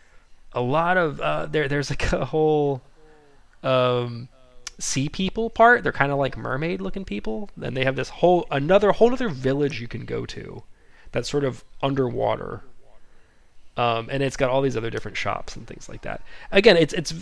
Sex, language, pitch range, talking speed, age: male, English, 115-155 Hz, 180 wpm, 30-49